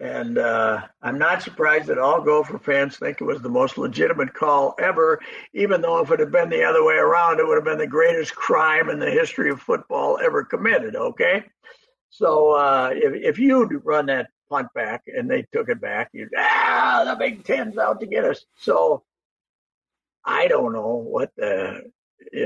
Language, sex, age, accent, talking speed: English, male, 60-79, American, 190 wpm